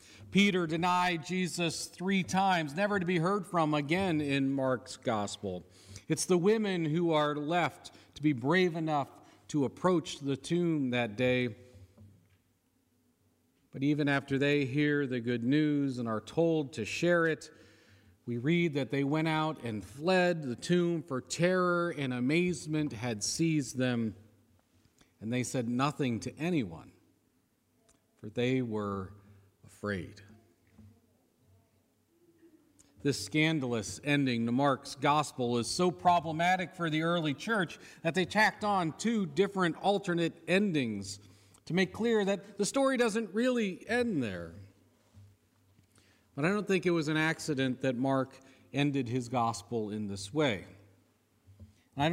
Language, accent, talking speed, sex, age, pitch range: English, American, 135 wpm, male, 40-59, 115-170 Hz